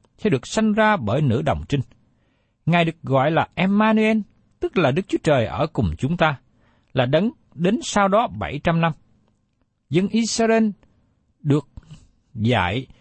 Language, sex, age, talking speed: Vietnamese, male, 60-79, 150 wpm